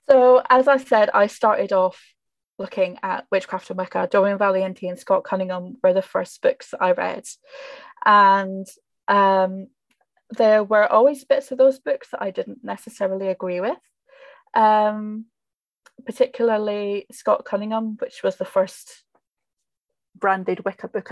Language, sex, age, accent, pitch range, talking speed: English, female, 20-39, British, 190-260 Hz, 140 wpm